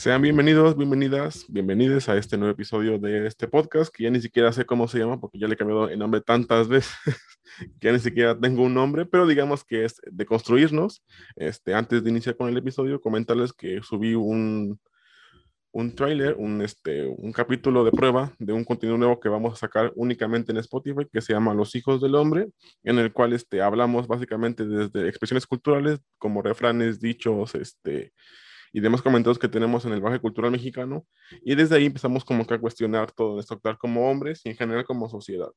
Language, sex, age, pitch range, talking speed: Spanish, male, 20-39, 110-130 Hz, 200 wpm